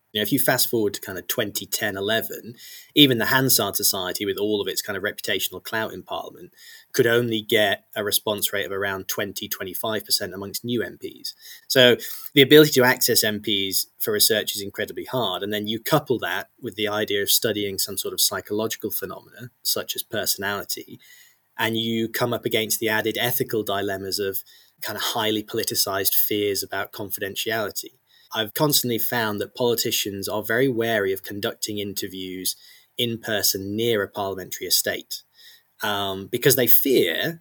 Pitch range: 105-130 Hz